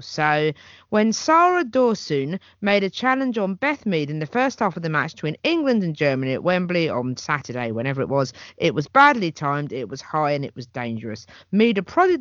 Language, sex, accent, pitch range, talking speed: English, female, British, 135-200 Hz, 205 wpm